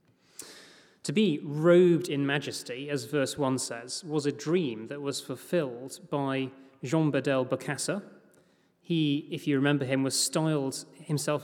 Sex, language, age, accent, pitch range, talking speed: male, English, 30-49, British, 130-165 Hz, 140 wpm